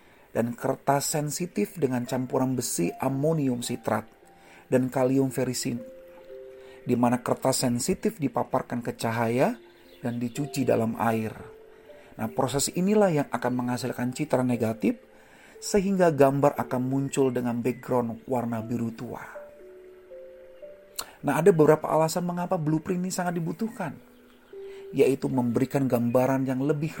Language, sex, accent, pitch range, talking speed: Indonesian, male, native, 125-175 Hz, 120 wpm